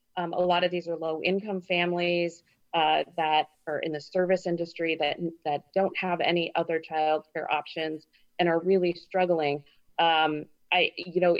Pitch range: 165-190 Hz